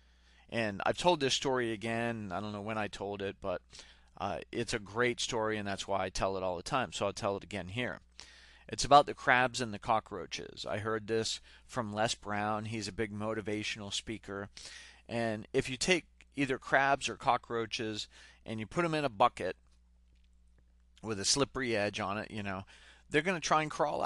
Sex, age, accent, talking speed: male, 40-59, American, 200 wpm